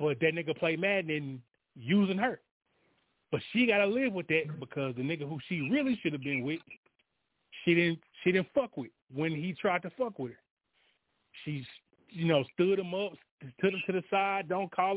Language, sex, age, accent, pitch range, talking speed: English, male, 30-49, American, 140-195 Hz, 200 wpm